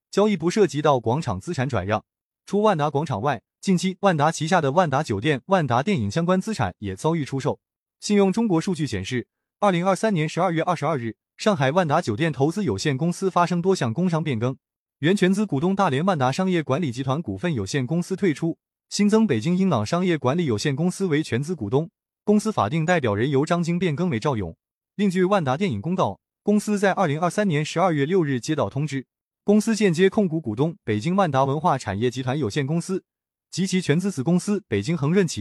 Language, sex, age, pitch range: Chinese, male, 20-39, 130-190 Hz